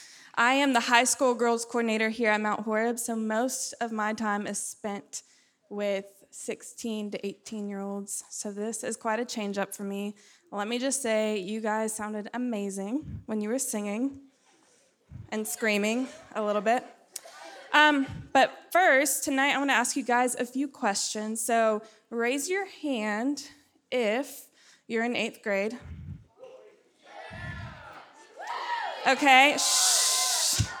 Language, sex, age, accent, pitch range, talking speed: English, female, 20-39, American, 220-285 Hz, 140 wpm